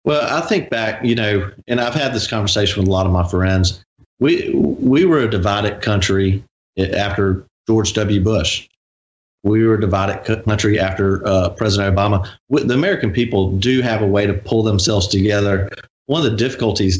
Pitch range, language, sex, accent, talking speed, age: 100-115 Hz, English, male, American, 180 wpm, 40-59